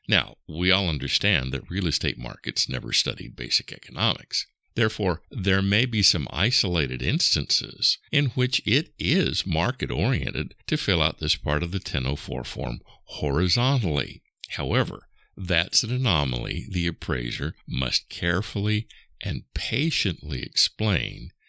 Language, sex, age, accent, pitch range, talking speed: English, male, 60-79, American, 75-100 Hz, 125 wpm